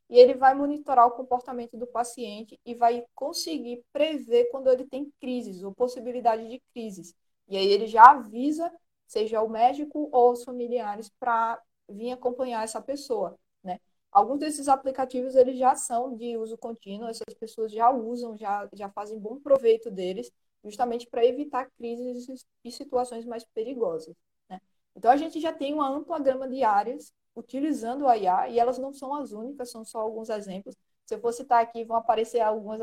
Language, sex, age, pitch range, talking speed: Portuguese, female, 20-39, 220-265 Hz, 175 wpm